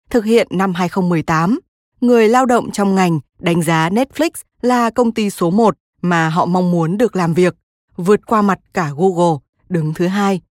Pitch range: 170-225 Hz